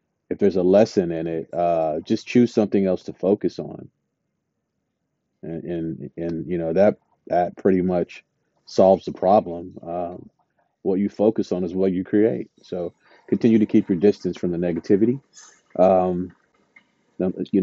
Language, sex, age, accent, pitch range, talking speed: English, male, 40-59, American, 90-120 Hz, 155 wpm